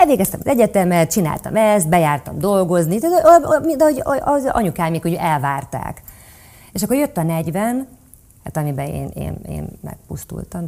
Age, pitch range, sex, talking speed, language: 30-49, 150-210 Hz, female, 130 wpm, Hungarian